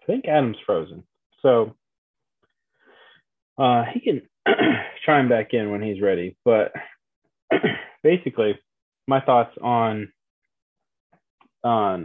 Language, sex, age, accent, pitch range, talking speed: English, male, 20-39, American, 105-145 Hz, 100 wpm